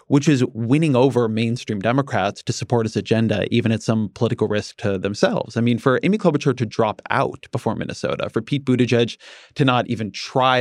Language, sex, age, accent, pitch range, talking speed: English, male, 20-39, American, 110-140 Hz, 190 wpm